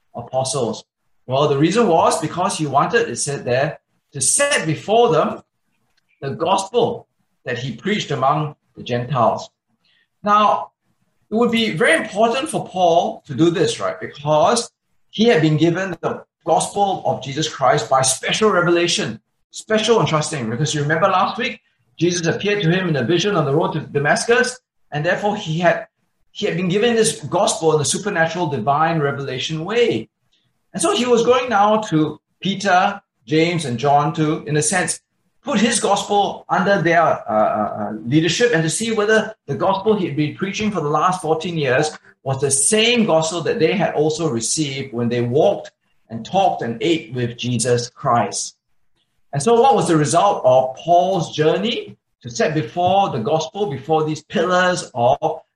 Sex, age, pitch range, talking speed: male, 20-39, 150-205 Hz, 170 wpm